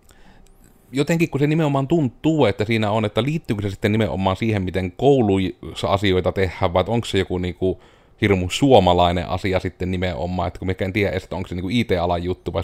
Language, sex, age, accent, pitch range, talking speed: Finnish, male, 30-49, native, 95-120 Hz, 190 wpm